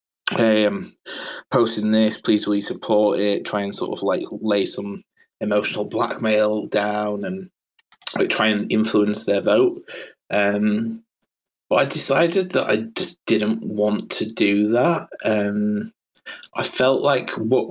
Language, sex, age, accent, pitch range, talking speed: English, male, 20-39, British, 105-115 Hz, 150 wpm